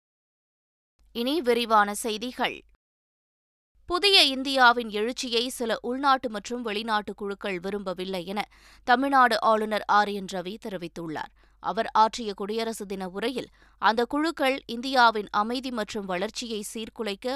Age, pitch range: 20-39, 205-260 Hz